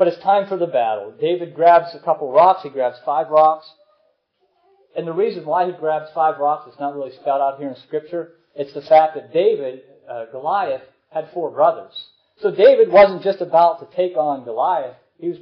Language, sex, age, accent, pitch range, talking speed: English, male, 40-59, American, 140-195 Hz, 200 wpm